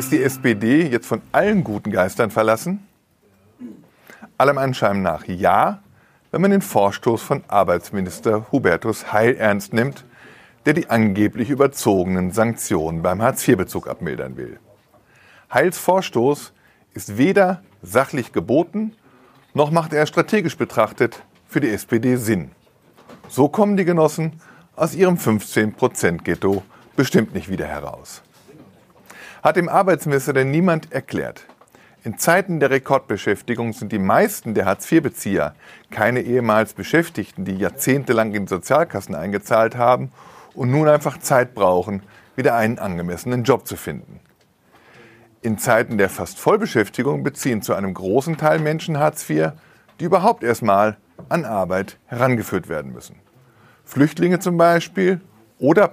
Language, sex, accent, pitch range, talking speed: German, male, German, 105-155 Hz, 125 wpm